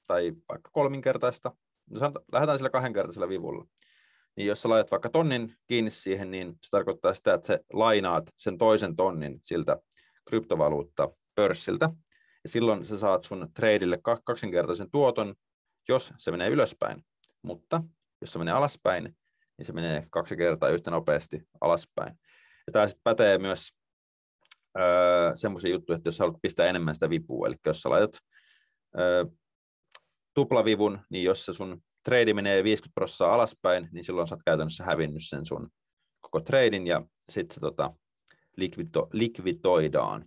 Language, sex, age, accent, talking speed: Finnish, male, 30-49, native, 135 wpm